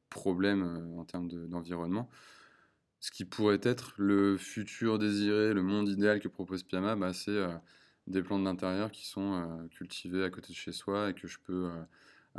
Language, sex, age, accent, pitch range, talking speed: French, male, 20-39, French, 90-100 Hz, 190 wpm